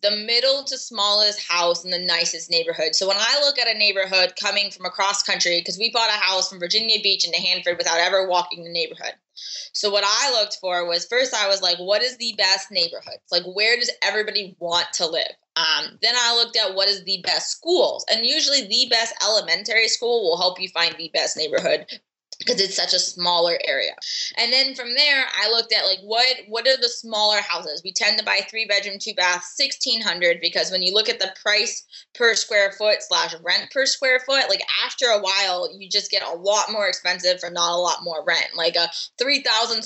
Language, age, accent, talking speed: English, 20-39, American, 215 wpm